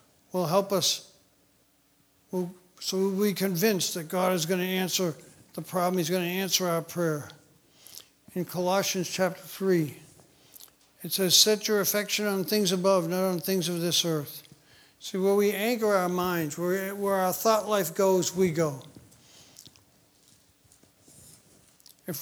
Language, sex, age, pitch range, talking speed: English, male, 60-79, 170-195 Hz, 145 wpm